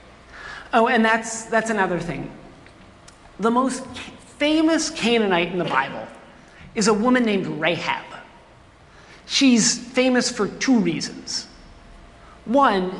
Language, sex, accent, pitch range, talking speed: English, male, American, 170-245 Hz, 115 wpm